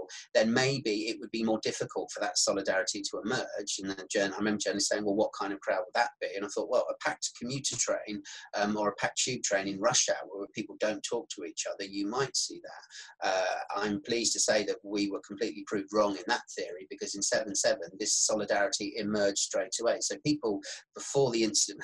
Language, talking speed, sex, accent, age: English, 225 wpm, male, British, 30-49